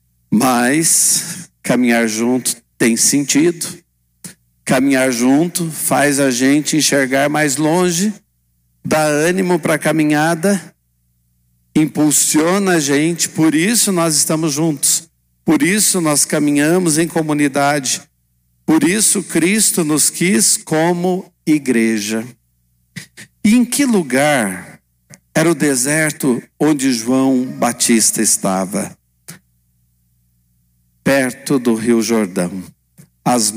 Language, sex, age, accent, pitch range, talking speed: Portuguese, male, 60-79, Brazilian, 100-165 Hz, 100 wpm